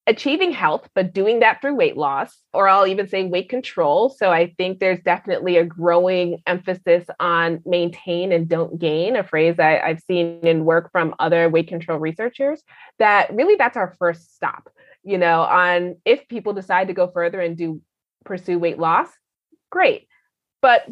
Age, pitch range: 20-39, 170-210 Hz